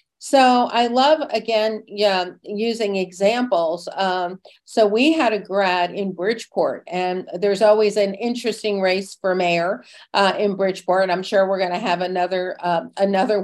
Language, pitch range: English, 185-240 Hz